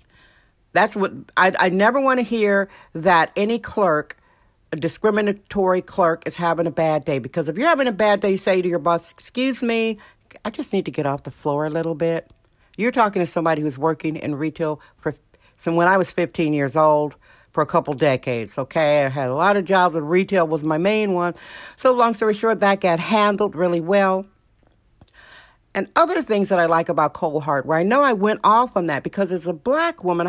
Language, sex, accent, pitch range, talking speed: English, female, American, 160-205 Hz, 215 wpm